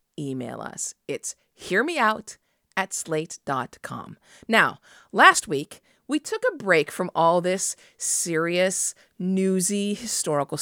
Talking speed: 95 wpm